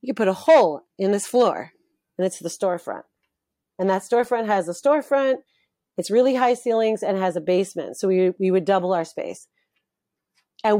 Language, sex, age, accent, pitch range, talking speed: English, female, 30-49, American, 180-245 Hz, 190 wpm